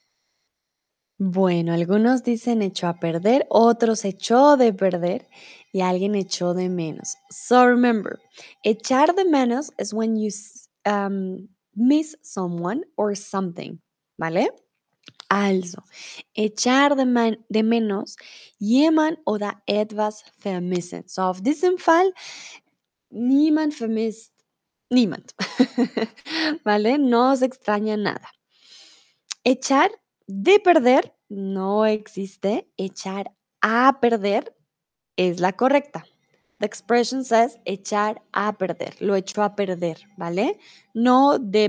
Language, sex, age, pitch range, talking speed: Spanish, female, 20-39, 195-255 Hz, 110 wpm